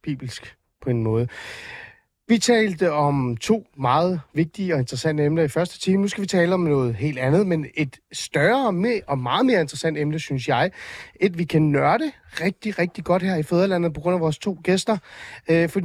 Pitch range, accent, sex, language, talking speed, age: 145-200 Hz, native, male, Danish, 195 wpm, 30-49